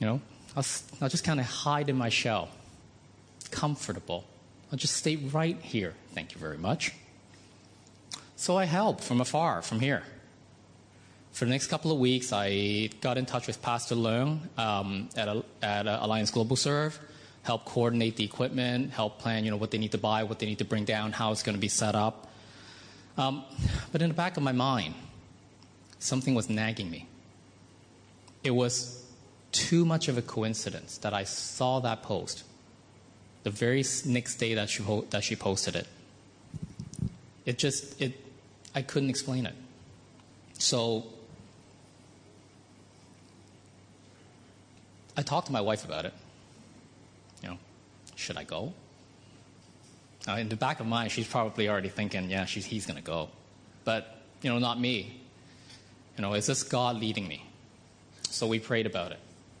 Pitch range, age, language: 100-130 Hz, 20-39, English